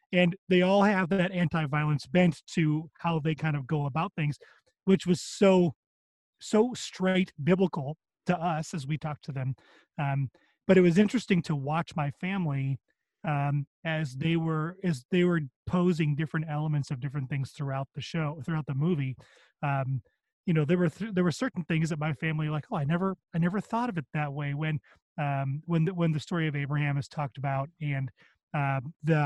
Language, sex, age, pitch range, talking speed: English, male, 30-49, 145-180 Hz, 190 wpm